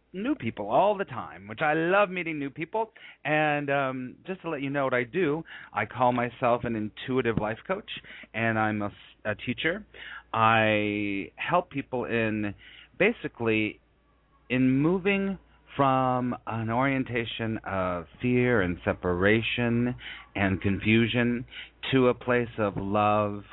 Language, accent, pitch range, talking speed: English, American, 95-120 Hz, 140 wpm